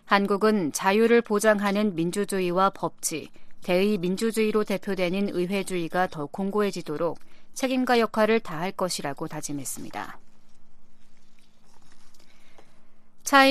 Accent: native